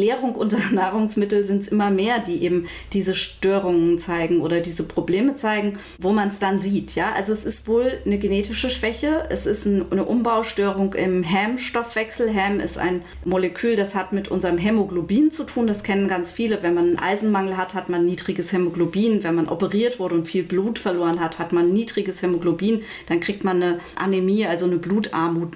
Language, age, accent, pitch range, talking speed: German, 30-49, German, 180-215 Hz, 190 wpm